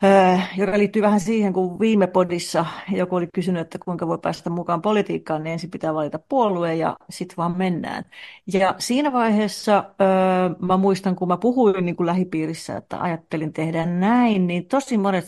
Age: 40-59